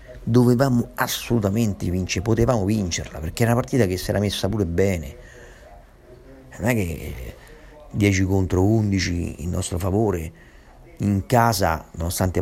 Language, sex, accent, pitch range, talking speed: Italian, male, native, 90-110 Hz, 130 wpm